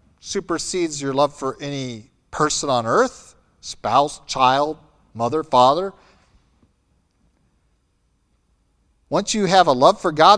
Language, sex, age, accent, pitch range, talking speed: English, male, 50-69, American, 100-165 Hz, 110 wpm